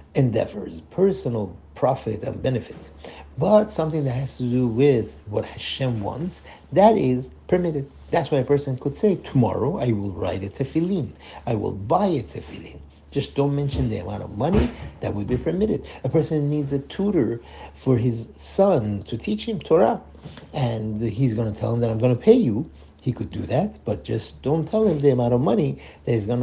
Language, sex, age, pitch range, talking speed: English, male, 60-79, 105-155 Hz, 195 wpm